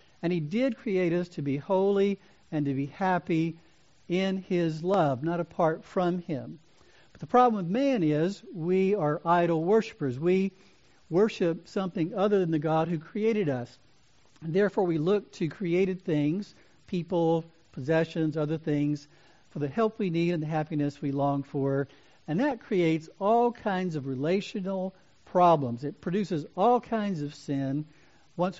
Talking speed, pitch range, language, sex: 160 wpm, 145-190 Hz, English, male